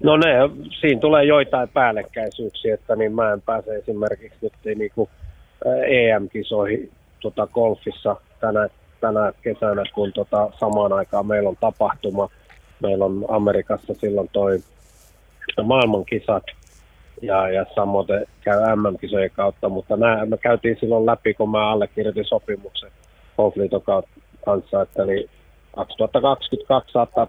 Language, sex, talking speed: Finnish, male, 125 wpm